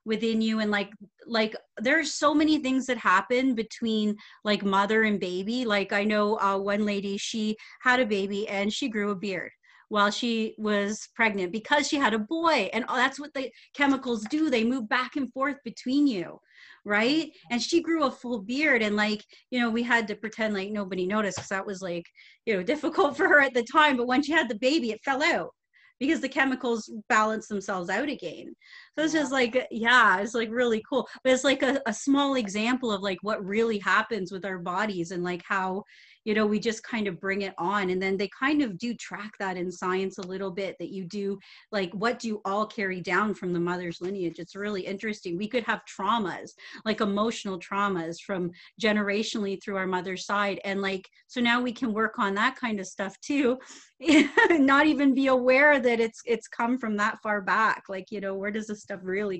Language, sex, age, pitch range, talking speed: English, female, 30-49, 200-255 Hz, 215 wpm